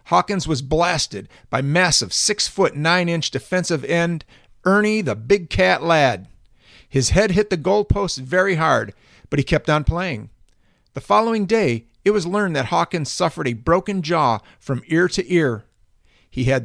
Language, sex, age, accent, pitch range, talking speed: English, male, 50-69, American, 130-180 Hz, 160 wpm